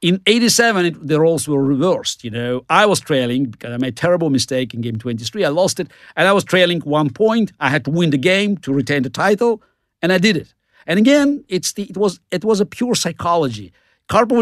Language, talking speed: English, 230 wpm